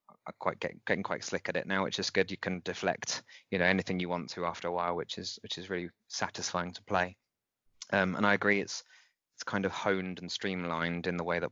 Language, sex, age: English, male, 20-39